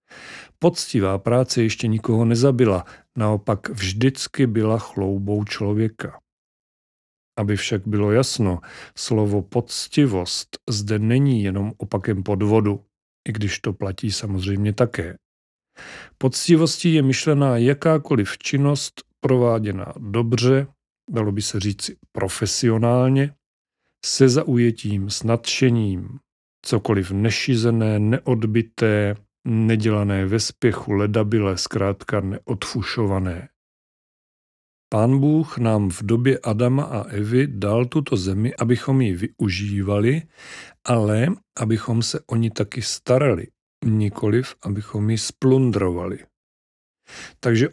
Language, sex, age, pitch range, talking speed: Czech, male, 40-59, 105-130 Hz, 100 wpm